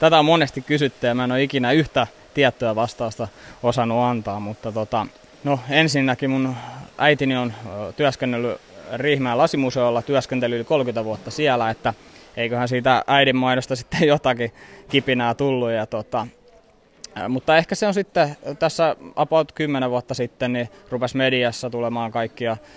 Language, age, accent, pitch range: Finnish, 20-39, native, 120-140 Hz